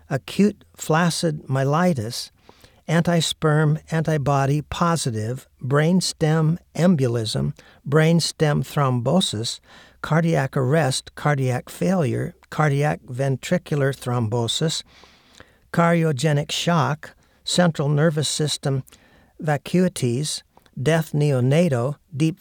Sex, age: male, 50-69